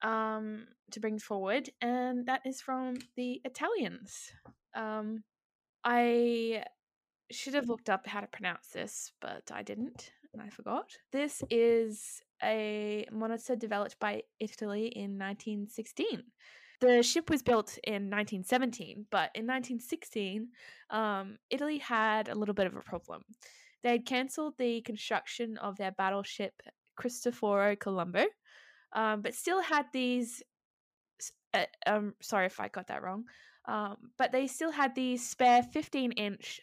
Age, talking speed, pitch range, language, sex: 10-29, 140 wpm, 210-255 Hz, English, female